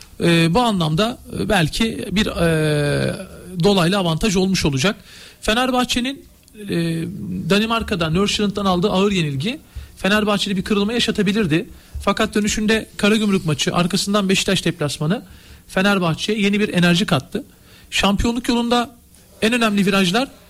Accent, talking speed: native, 110 wpm